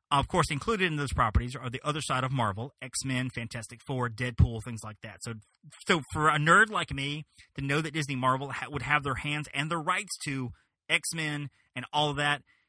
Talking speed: 220 wpm